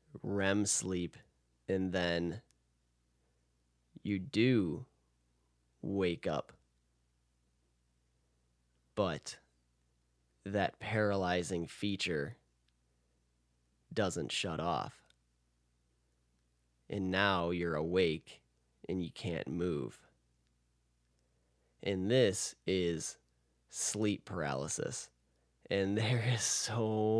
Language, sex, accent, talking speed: English, male, American, 70 wpm